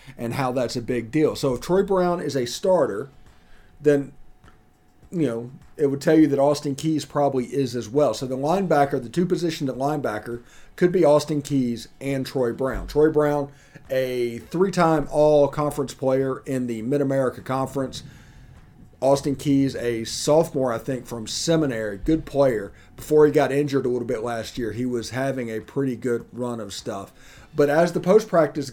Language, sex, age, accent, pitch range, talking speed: English, male, 40-59, American, 120-145 Hz, 170 wpm